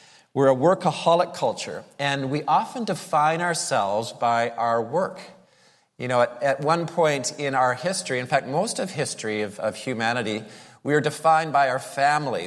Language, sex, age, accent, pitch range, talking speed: English, male, 40-59, American, 120-160 Hz, 170 wpm